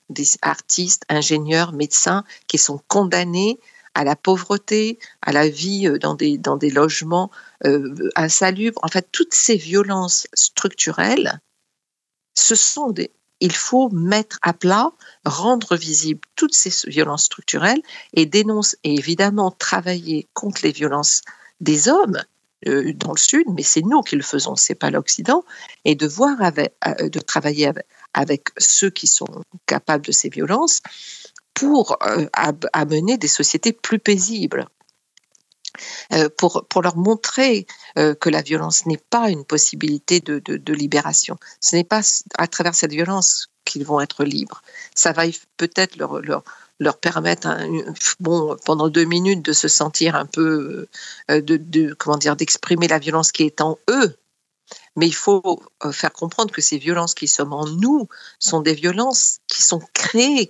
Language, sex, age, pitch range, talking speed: Arabic, female, 50-69, 155-210 Hz, 155 wpm